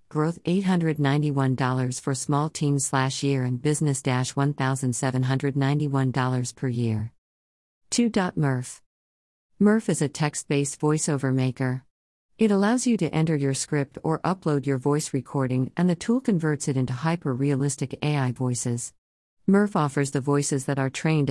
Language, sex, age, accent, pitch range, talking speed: English, female, 50-69, American, 130-155 Hz, 135 wpm